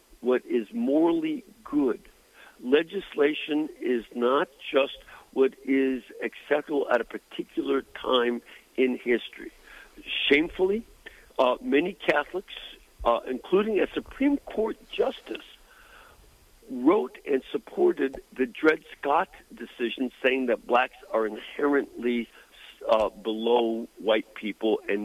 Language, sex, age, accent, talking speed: English, male, 50-69, American, 105 wpm